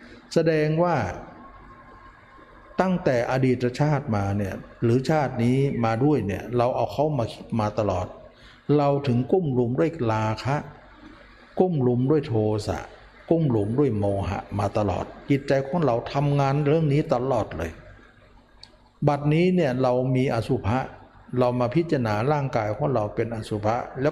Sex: male